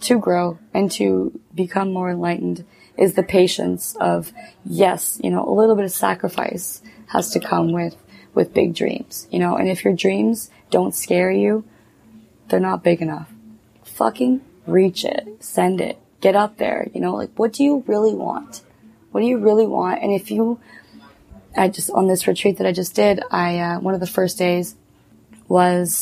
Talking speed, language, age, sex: 185 wpm, English, 20-39, female